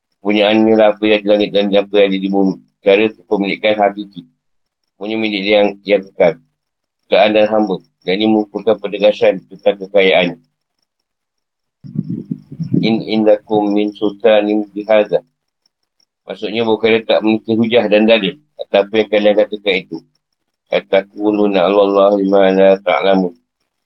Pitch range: 100-110 Hz